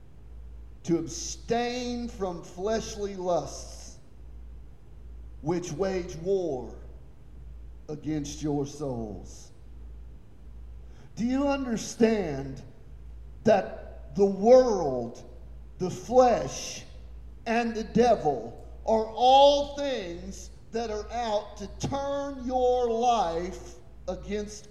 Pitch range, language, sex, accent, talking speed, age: 160-275 Hz, English, male, American, 80 wpm, 40-59